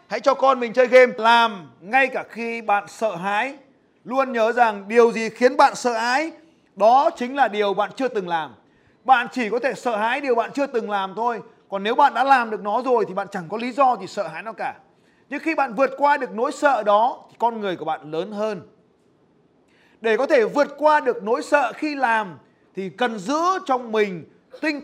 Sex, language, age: male, Vietnamese, 30-49